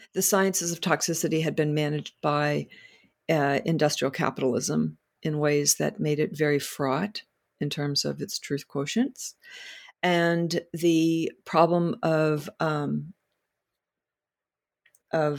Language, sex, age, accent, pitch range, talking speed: English, female, 50-69, American, 150-180 Hz, 115 wpm